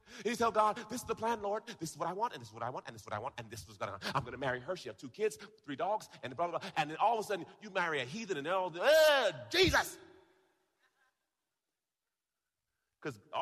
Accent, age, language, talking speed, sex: American, 40-59, English, 270 wpm, male